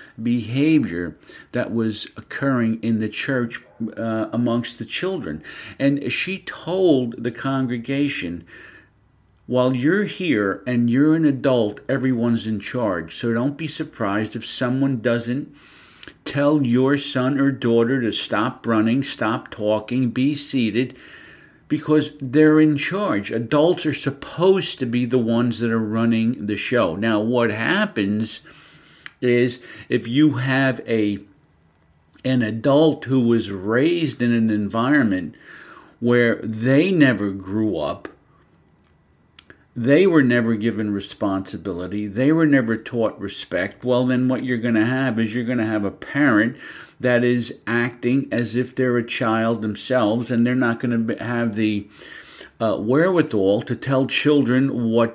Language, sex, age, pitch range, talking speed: English, male, 50-69, 110-135 Hz, 140 wpm